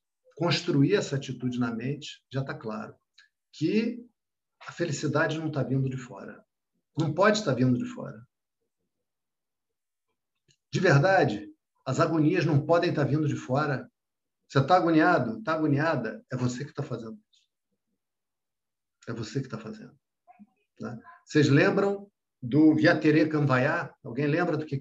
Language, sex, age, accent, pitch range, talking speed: Portuguese, male, 50-69, Brazilian, 125-170 Hz, 145 wpm